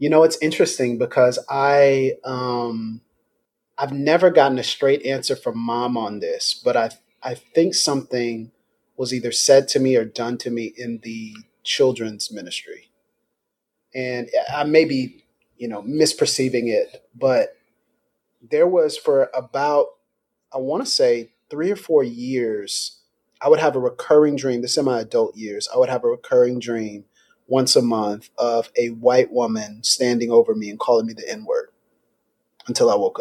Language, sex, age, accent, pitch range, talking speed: English, male, 30-49, American, 120-165 Hz, 165 wpm